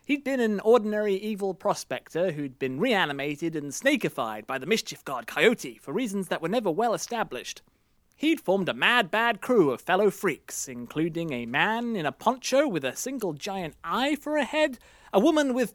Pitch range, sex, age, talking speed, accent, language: 155-245 Hz, male, 30-49, 185 wpm, British, English